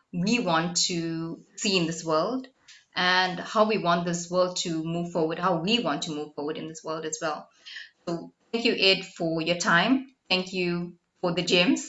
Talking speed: 195 wpm